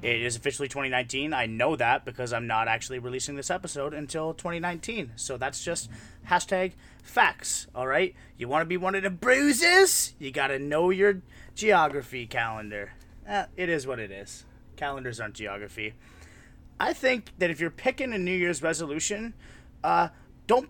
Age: 30-49